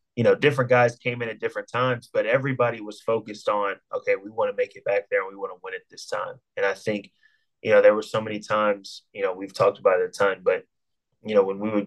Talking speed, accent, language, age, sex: 275 wpm, American, English, 20-39, male